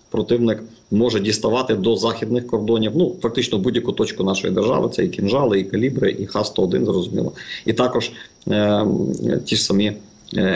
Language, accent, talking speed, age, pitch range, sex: Ukrainian, native, 160 wpm, 50-69, 105-120 Hz, male